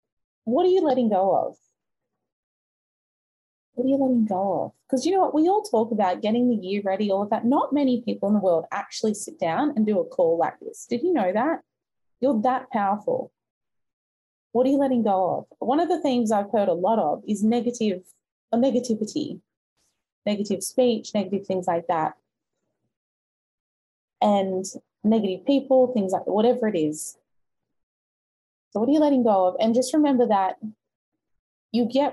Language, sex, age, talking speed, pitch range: English, female, 20-39, 175 wpm, 200-265 Hz